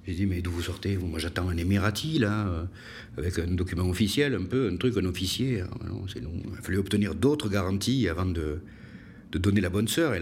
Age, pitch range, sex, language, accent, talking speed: 60-79, 90-115 Hz, male, French, French, 215 wpm